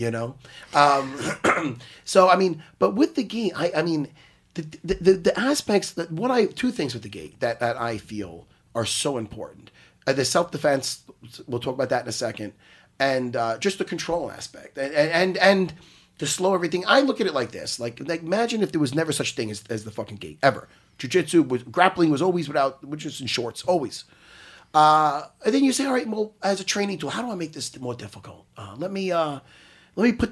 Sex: male